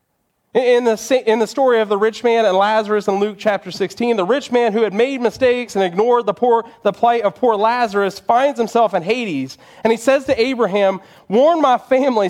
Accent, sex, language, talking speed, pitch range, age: American, male, English, 210 wpm, 175-235 Hz, 30-49